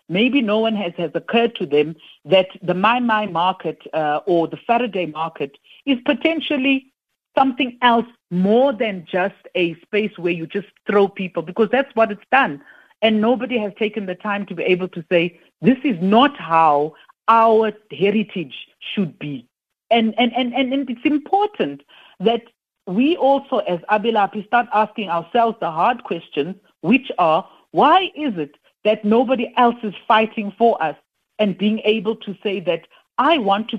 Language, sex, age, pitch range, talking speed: English, female, 60-79, 175-225 Hz, 170 wpm